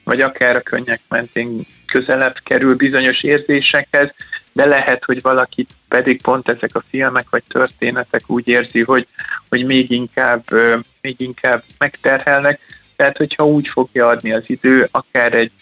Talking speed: 140 wpm